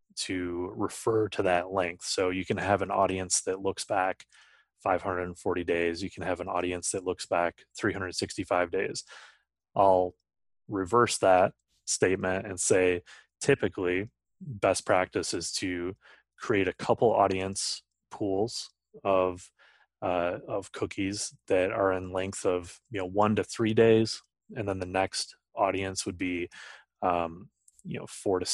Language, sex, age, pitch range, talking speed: English, male, 20-39, 90-105 Hz, 135 wpm